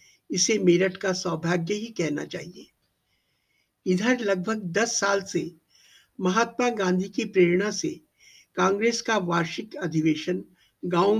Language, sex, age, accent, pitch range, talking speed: Hindi, male, 60-79, native, 175-225 Hz, 120 wpm